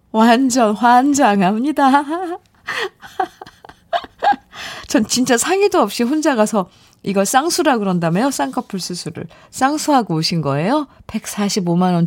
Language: Korean